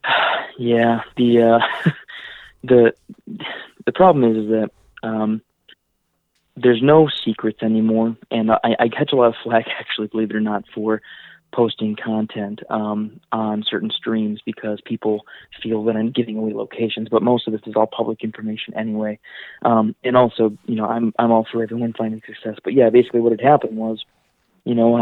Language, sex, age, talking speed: English, male, 20-39, 175 wpm